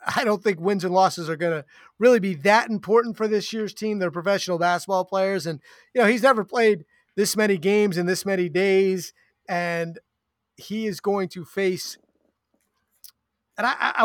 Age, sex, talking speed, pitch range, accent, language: 30-49, male, 180 wpm, 165-200 Hz, American, English